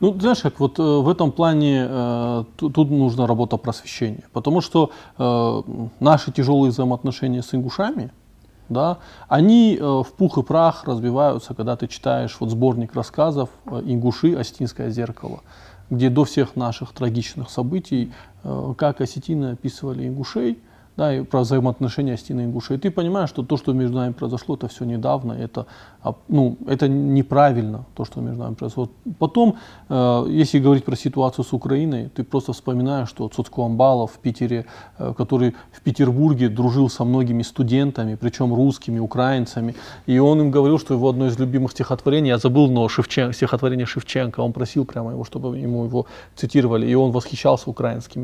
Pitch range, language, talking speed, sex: 120-140 Hz, Russian, 165 wpm, male